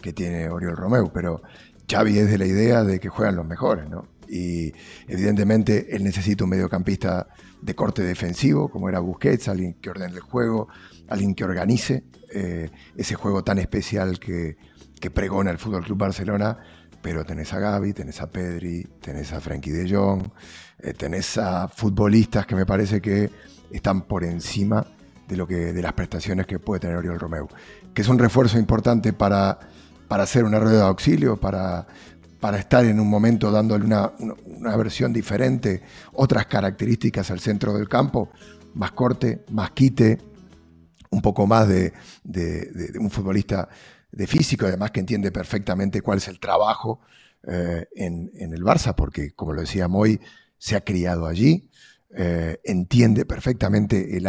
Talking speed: 165 wpm